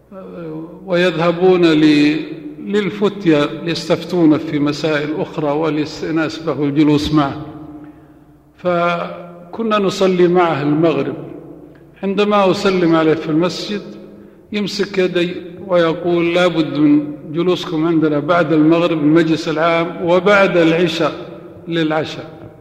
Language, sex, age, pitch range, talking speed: Arabic, male, 50-69, 155-180 Hz, 90 wpm